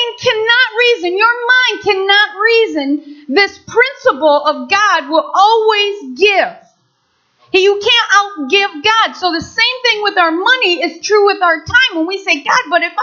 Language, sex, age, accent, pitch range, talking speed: English, female, 40-59, American, 310-445 Hz, 160 wpm